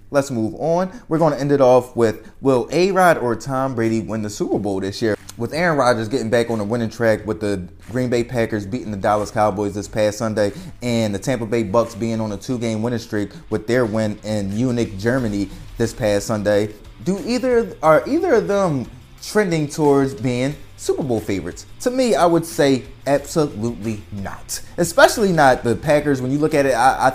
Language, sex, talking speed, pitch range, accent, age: English, male, 205 wpm, 115-160 Hz, American, 20-39